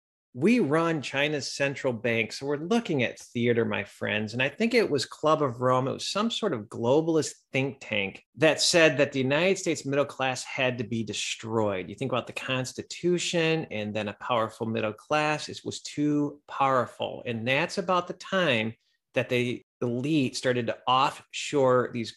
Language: English